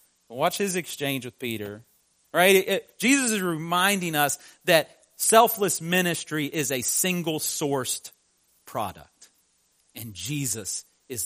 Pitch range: 130-180 Hz